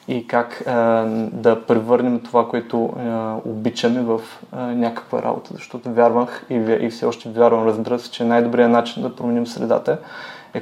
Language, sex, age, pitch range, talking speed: Bulgarian, male, 20-39, 115-125 Hz, 165 wpm